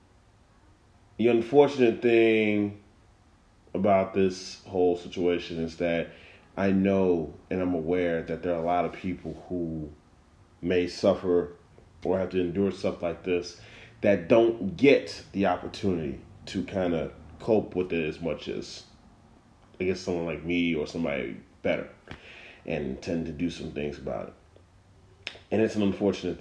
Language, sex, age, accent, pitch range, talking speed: English, male, 30-49, American, 85-100 Hz, 150 wpm